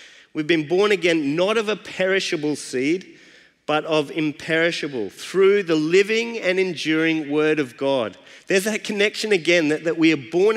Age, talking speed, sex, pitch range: 30-49, 165 wpm, male, 160-205 Hz